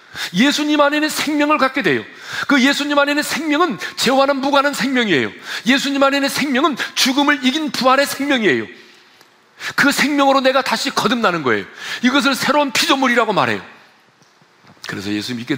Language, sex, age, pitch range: Korean, male, 40-59, 190-280 Hz